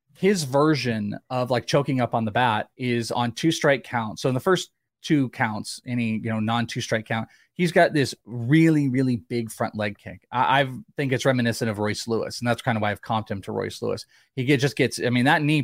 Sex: male